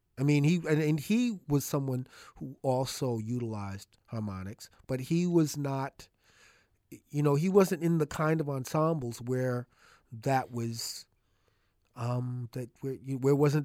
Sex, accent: male, American